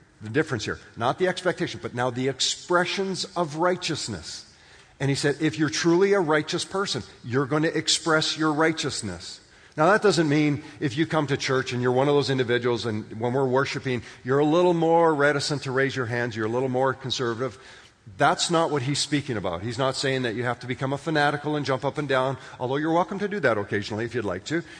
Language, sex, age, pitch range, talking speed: English, male, 50-69, 115-155 Hz, 225 wpm